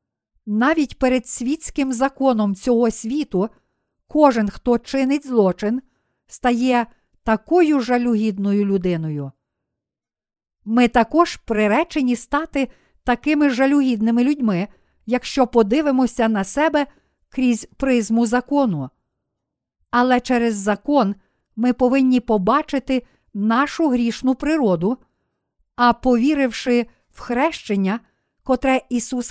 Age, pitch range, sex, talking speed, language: 50-69, 220-270 Hz, female, 90 wpm, Ukrainian